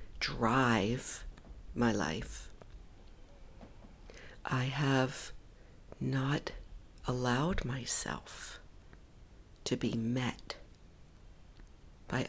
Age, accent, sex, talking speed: 60-79, American, female, 60 wpm